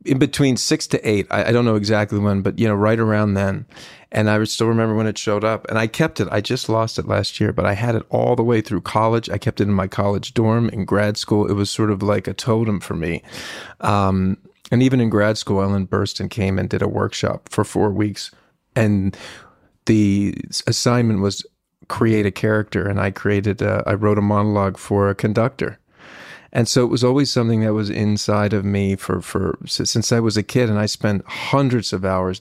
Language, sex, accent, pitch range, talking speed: English, male, American, 100-110 Hz, 225 wpm